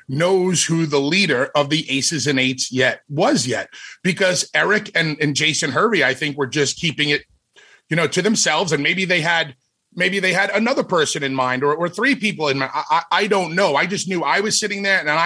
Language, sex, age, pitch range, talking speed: English, male, 30-49, 145-205 Hz, 230 wpm